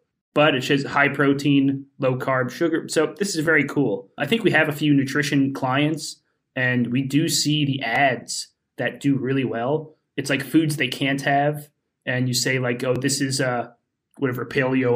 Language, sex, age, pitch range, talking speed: English, male, 30-49, 125-150 Hz, 185 wpm